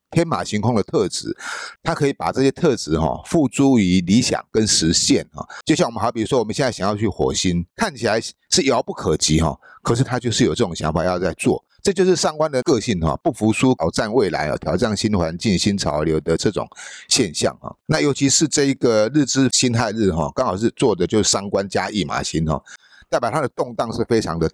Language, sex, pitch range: Chinese, male, 90-140 Hz